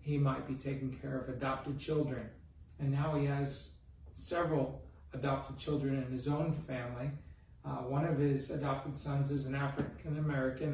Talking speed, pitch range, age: 155 wpm, 130-150 Hz, 40-59